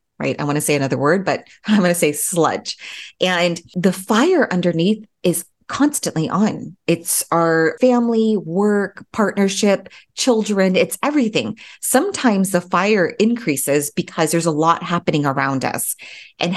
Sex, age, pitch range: female, 30-49, 165-220 Hz